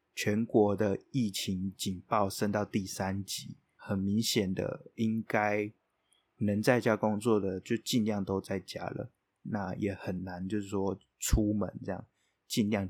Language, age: Chinese, 20-39